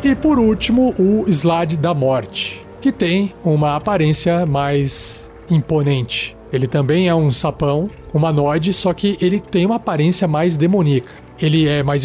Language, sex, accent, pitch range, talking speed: Portuguese, male, Brazilian, 145-185 Hz, 150 wpm